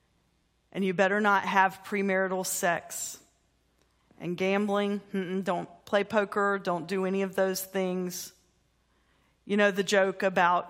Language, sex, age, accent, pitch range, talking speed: English, female, 40-59, American, 180-210 Hz, 140 wpm